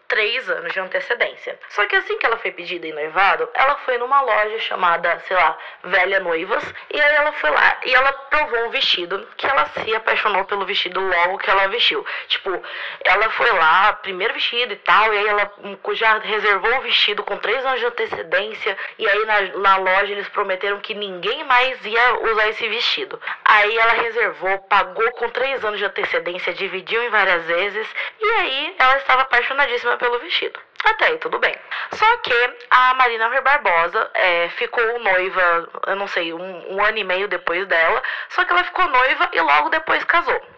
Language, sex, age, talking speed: Portuguese, female, 20-39, 190 wpm